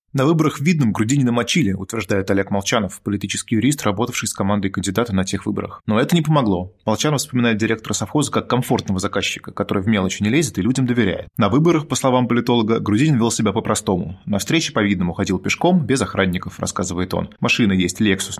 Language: Russian